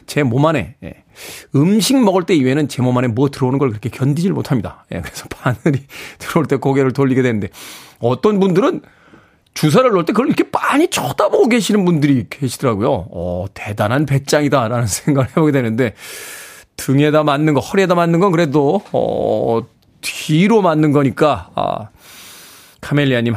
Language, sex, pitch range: Korean, male, 125-190 Hz